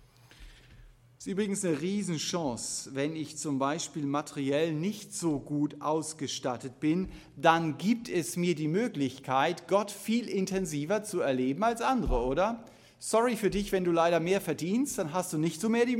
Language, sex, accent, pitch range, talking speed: German, male, German, 145-210 Hz, 160 wpm